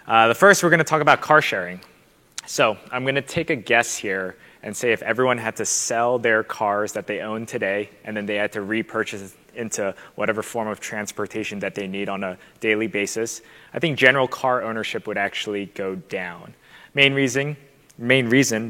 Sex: male